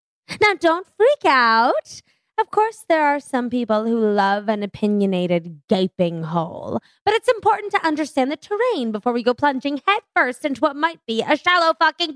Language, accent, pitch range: English, American, 240-345 Hz